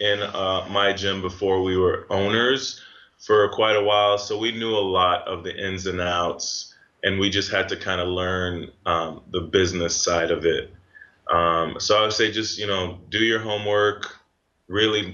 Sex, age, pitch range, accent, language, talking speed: male, 20-39, 90-110 Hz, American, English, 185 wpm